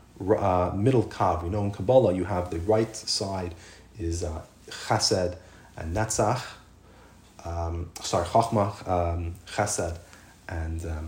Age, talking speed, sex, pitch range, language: 30-49, 130 wpm, male, 95-115 Hz, English